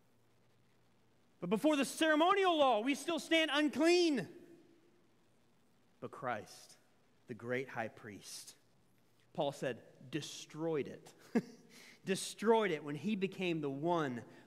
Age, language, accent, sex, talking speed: 30-49, English, American, male, 105 wpm